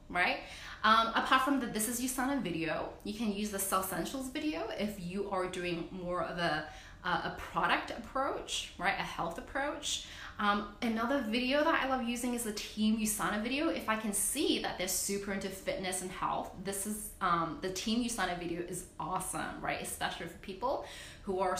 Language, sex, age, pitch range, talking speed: English, female, 20-39, 190-265 Hz, 190 wpm